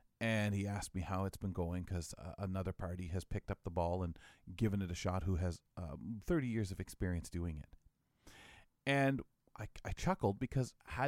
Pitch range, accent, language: 95-125 Hz, American, English